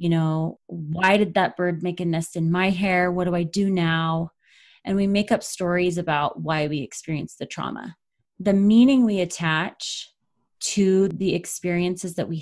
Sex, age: female, 20-39